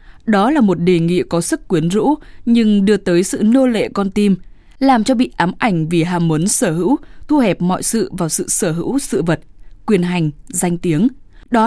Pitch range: 170-230 Hz